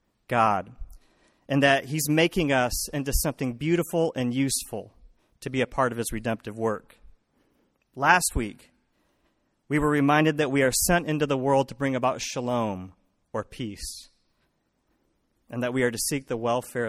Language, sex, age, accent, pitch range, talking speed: English, male, 40-59, American, 120-175 Hz, 160 wpm